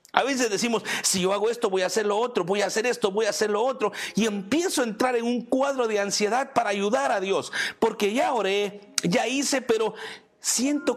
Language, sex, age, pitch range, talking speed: Spanish, male, 50-69, 185-235 Hz, 225 wpm